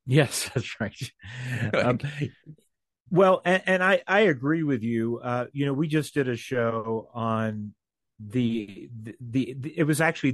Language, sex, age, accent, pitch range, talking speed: English, male, 50-69, American, 120-155 Hz, 165 wpm